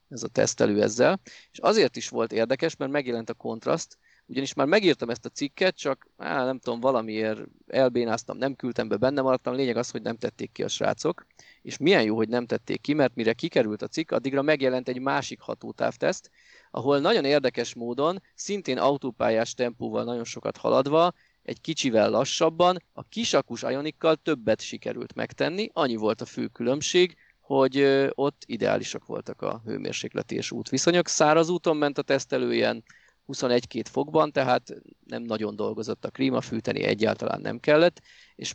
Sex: male